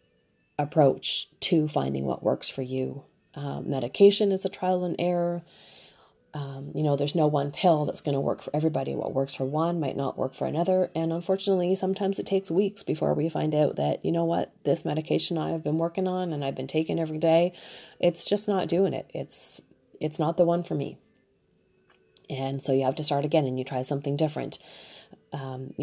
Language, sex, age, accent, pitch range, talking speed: English, female, 30-49, American, 135-165 Hz, 200 wpm